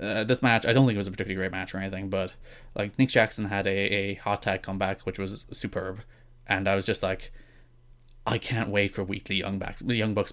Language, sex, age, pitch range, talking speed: English, male, 20-39, 105-125 Hz, 240 wpm